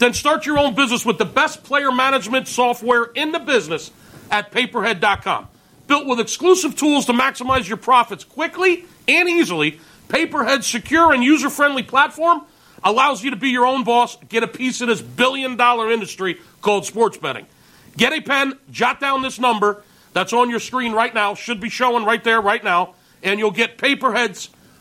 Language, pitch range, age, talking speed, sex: English, 215-275 Hz, 40-59, 175 wpm, male